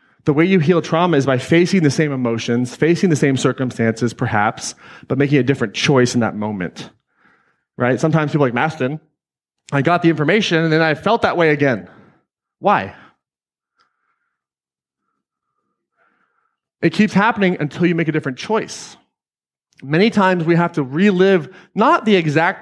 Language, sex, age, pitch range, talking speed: English, male, 30-49, 130-175 Hz, 160 wpm